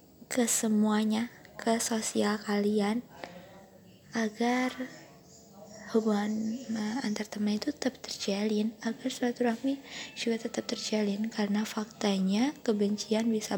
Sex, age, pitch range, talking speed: female, 20-39, 205-250 Hz, 100 wpm